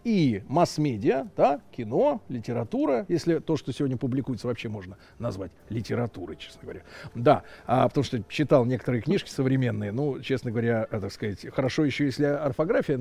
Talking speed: 150 wpm